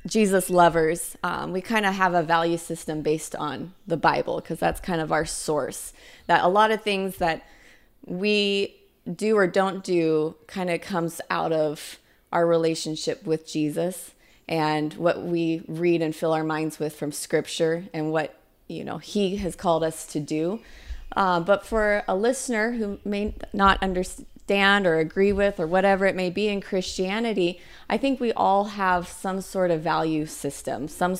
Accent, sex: American, female